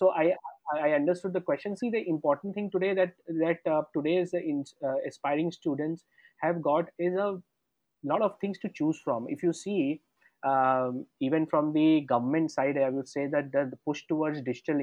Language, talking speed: English, 190 wpm